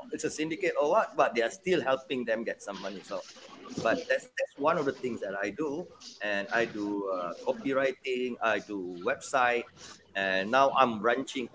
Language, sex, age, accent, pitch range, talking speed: English, male, 30-49, Malaysian, 115-185 Hz, 190 wpm